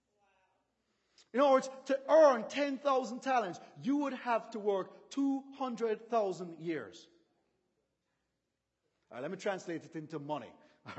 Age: 40-59